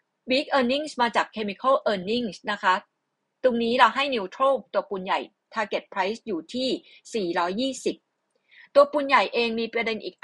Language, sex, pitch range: Thai, female, 195-245 Hz